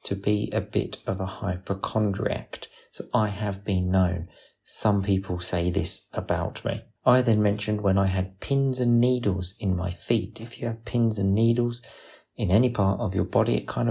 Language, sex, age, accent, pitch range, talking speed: English, male, 40-59, British, 95-115 Hz, 190 wpm